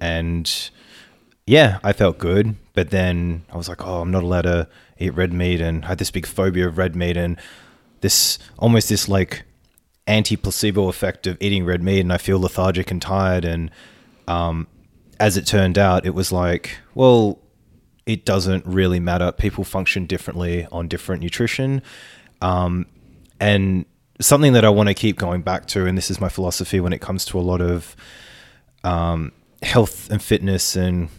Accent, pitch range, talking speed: Australian, 90-100 Hz, 175 wpm